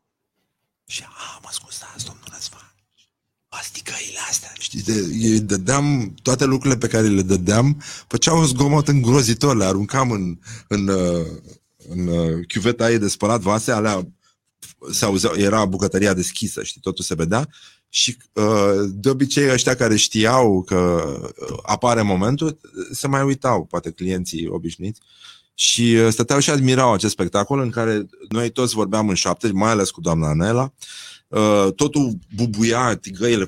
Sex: male